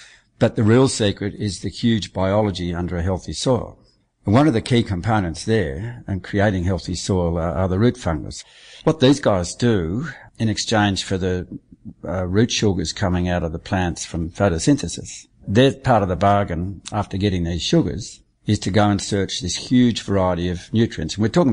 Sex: male